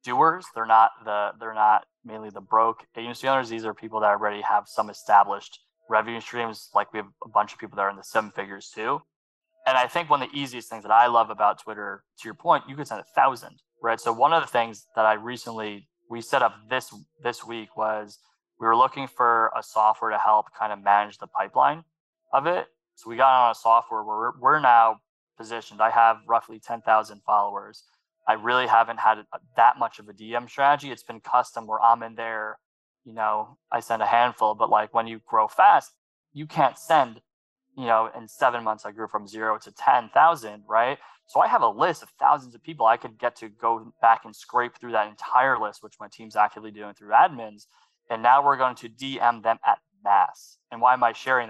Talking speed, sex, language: 220 wpm, male, English